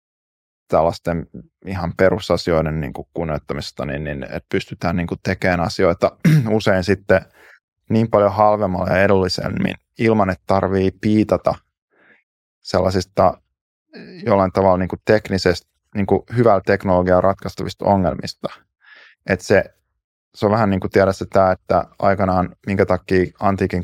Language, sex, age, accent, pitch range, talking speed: Finnish, male, 20-39, native, 90-100 Hz, 130 wpm